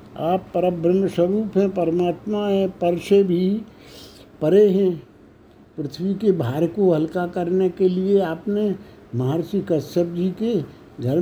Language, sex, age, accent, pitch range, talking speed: Hindi, male, 60-79, native, 165-190 Hz, 140 wpm